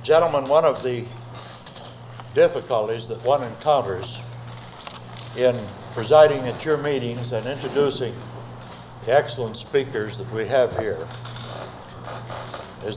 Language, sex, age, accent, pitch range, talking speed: English, male, 60-79, American, 120-145 Hz, 105 wpm